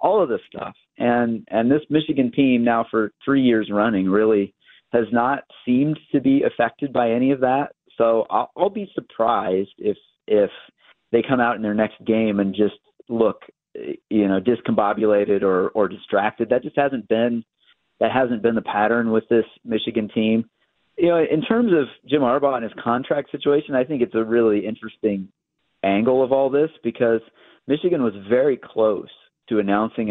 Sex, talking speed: male, 175 wpm